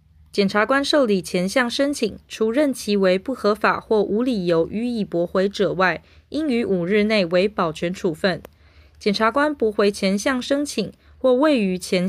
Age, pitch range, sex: 20-39, 180-245 Hz, female